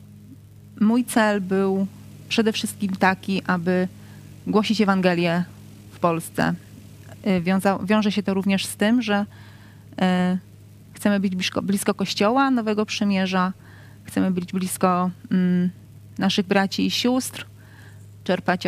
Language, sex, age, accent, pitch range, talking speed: Polish, female, 30-49, native, 130-195 Hz, 115 wpm